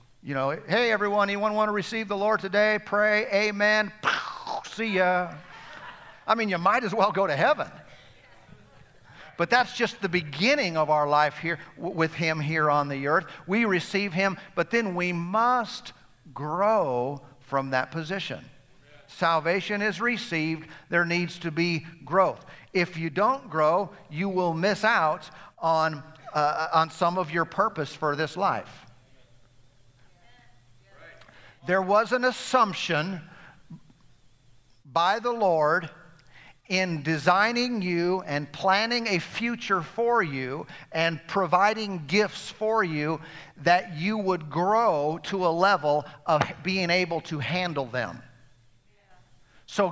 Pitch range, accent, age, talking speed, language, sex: 150-195 Hz, American, 50-69, 135 wpm, English, male